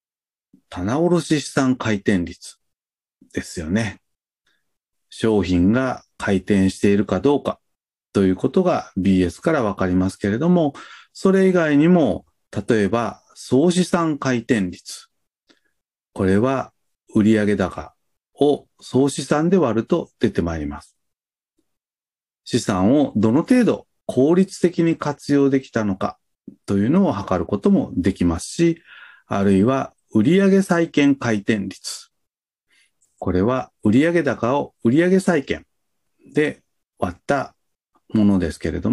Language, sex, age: Japanese, male, 40-59